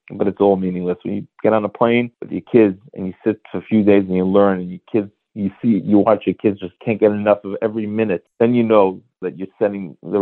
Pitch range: 100-120 Hz